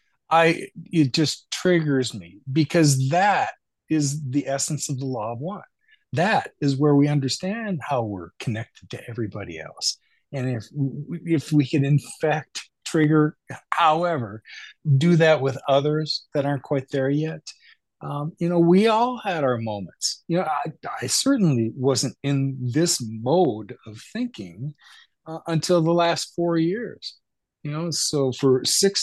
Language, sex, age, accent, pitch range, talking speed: English, male, 40-59, American, 130-160 Hz, 150 wpm